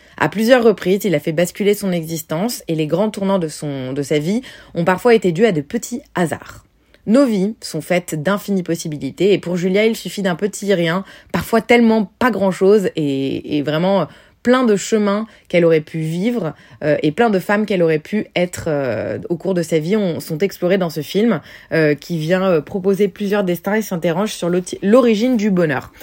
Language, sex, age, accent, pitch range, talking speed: French, female, 20-39, French, 160-205 Hz, 205 wpm